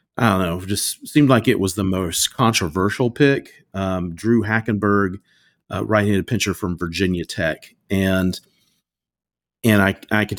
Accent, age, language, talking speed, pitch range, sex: American, 40-59, English, 155 wpm, 85-105 Hz, male